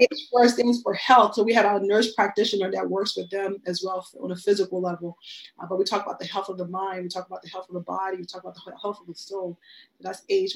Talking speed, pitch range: 285 wpm, 185-225 Hz